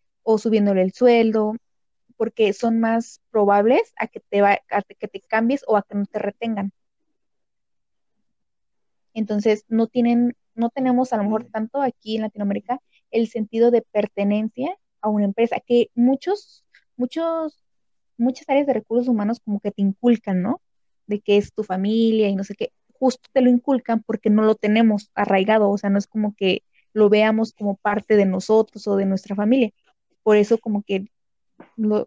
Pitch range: 205-240 Hz